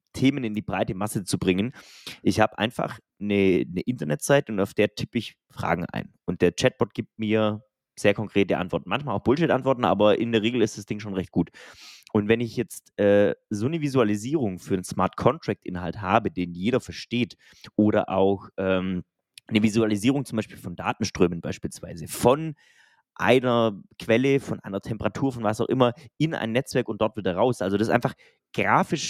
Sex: male